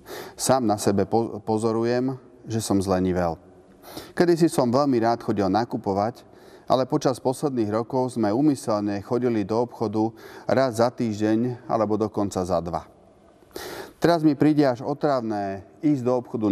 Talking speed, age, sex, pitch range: 135 wpm, 30-49, male, 100-125 Hz